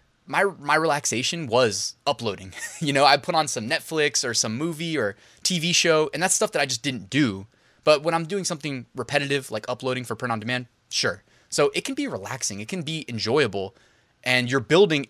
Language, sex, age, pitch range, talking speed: English, male, 20-39, 115-155 Hz, 195 wpm